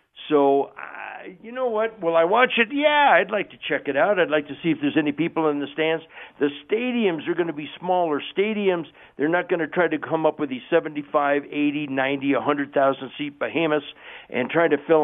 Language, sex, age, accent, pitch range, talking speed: English, male, 60-79, American, 145-200 Hz, 215 wpm